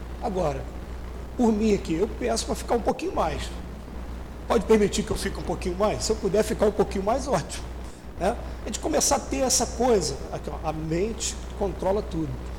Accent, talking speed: Brazilian, 185 wpm